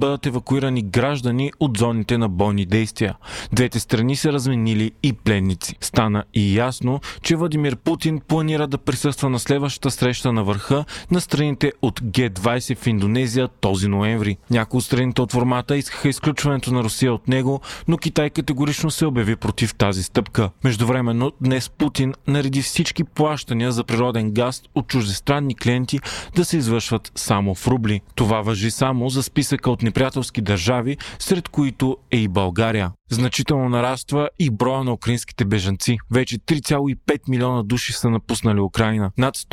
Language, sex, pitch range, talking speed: Bulgarian, male, 110-140 Hz, 155 wpm